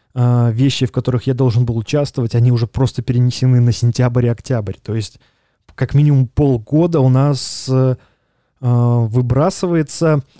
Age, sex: 20-39, male